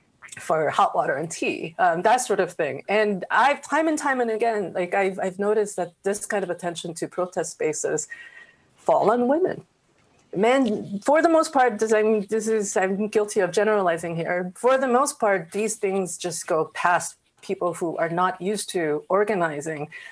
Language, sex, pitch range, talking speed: English, female, 180-255 Hz, 180 wpm